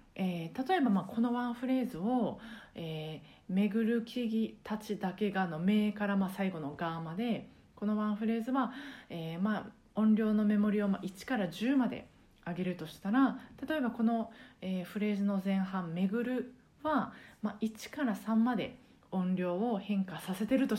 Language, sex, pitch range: Japanese, female, 185-245 Hz